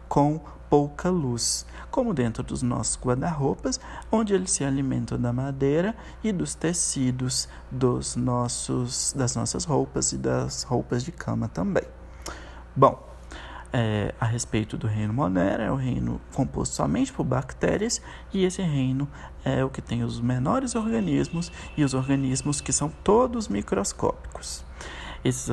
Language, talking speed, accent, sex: Portuguese, 130 wpm, Brazilian, male